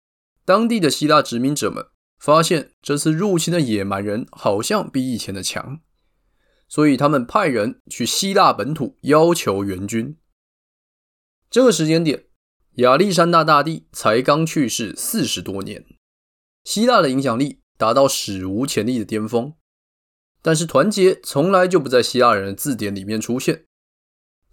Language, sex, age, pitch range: Chinese, male, 20-39, 105-165 Hz